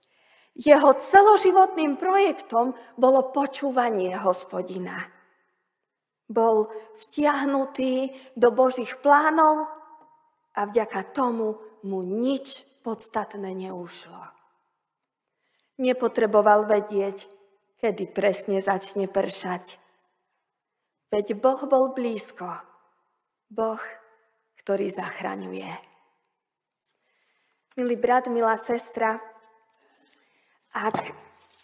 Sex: female